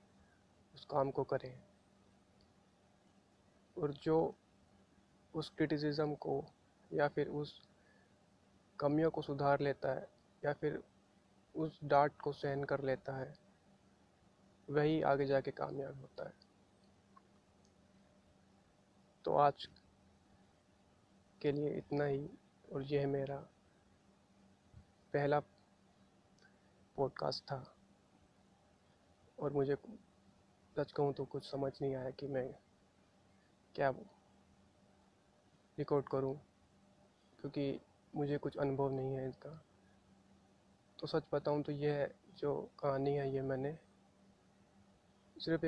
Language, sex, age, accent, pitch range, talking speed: Hindi, male, 20-39, native, 100-145 Hz, 100 wpm